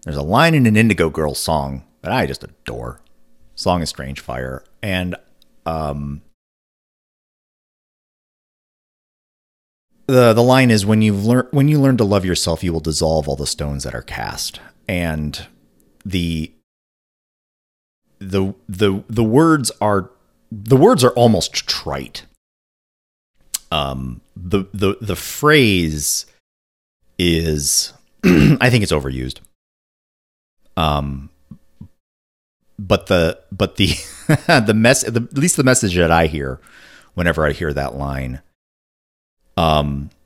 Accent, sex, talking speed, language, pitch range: American, male, 120 wpm, English, 70-105 Hz